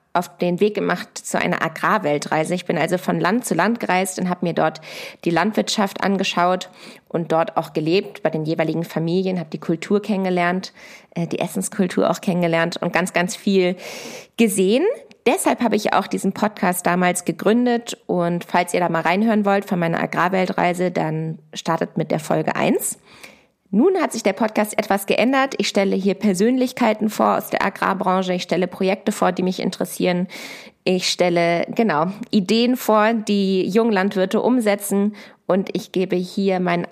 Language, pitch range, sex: German, 175-215 Hz, female